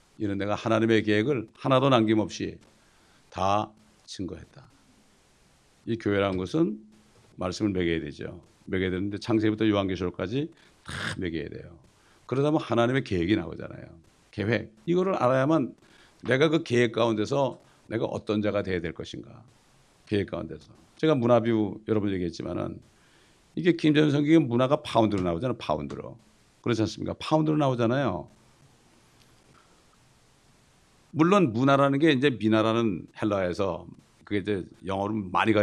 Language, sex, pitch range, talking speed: English, male, 105-140 Hz, 110 wpm